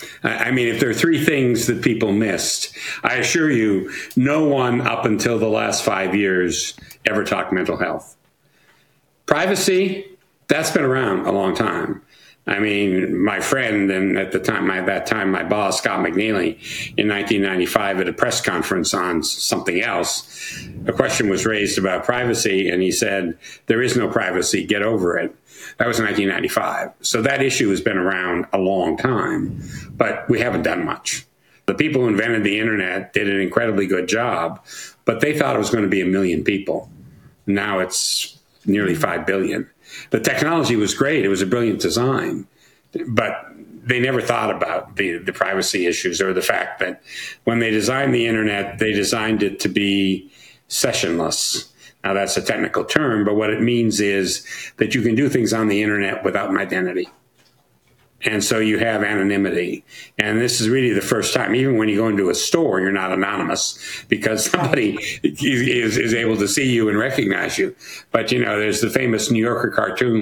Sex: male